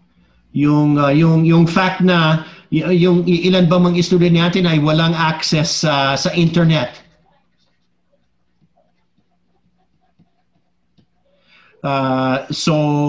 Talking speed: 85 wpm